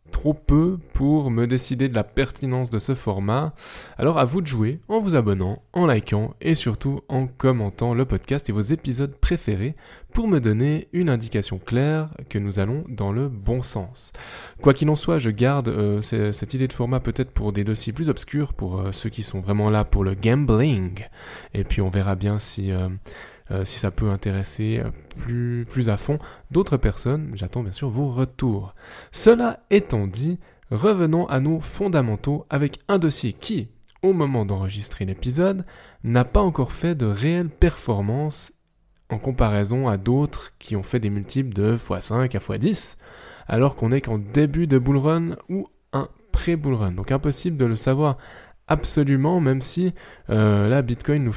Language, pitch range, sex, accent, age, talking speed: French, 110-150 Hz, male, French, 20-39, 175 wpm